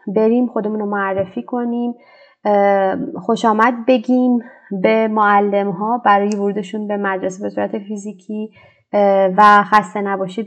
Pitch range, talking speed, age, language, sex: 200-235 Hz, 115 wpm, 30-49, Persian, female